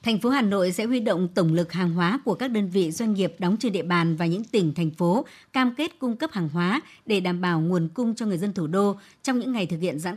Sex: male